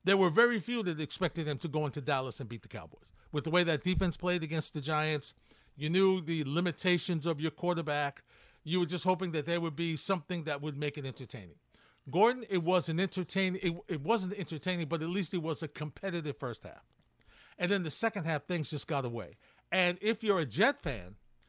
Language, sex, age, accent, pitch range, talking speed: English, male, 50-69, American, 125-175 Hz, 215 wpm